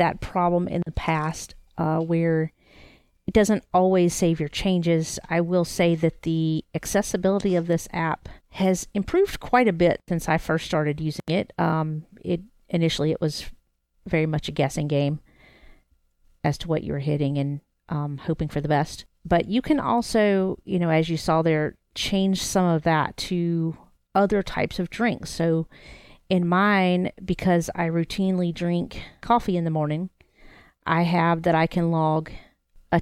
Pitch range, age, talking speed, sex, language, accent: 155-180 Hz, 40-59, 165 wpm, female, English, American